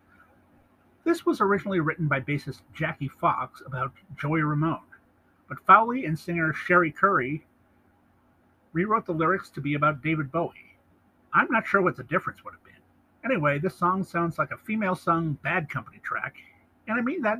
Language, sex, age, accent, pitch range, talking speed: English, male, 50-69, American, 130-185 Hz, 165 wpm